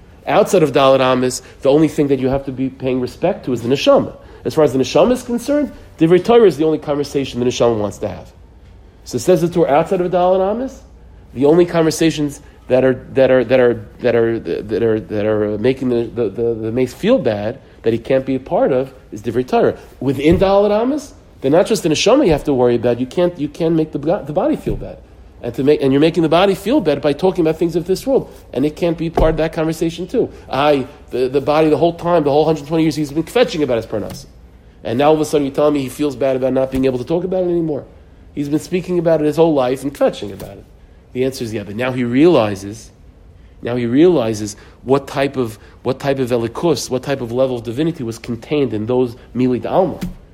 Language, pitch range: English, 115-160 Hz